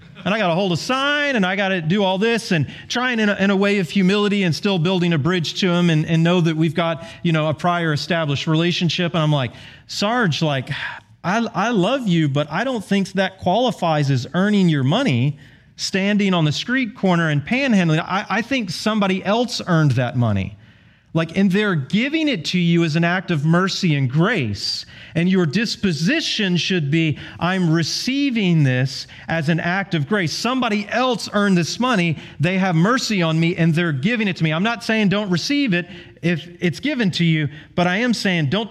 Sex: male